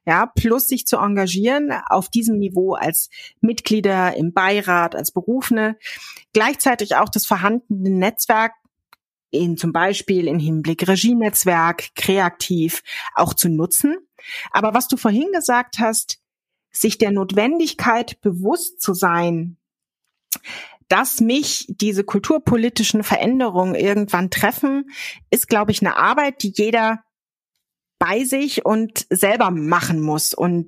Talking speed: 120 wpm